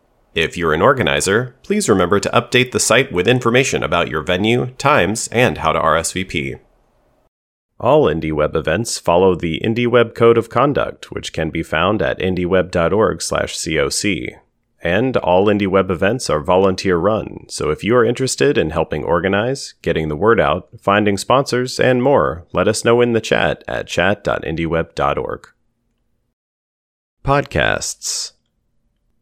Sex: male